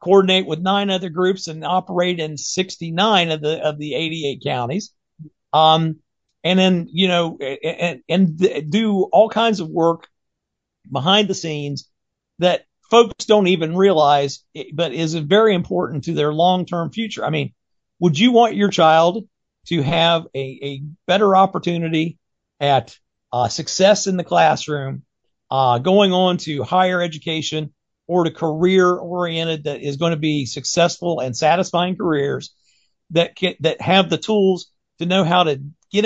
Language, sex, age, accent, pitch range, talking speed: English, male, 50-69, American, 155-185 Hz, 155 wpm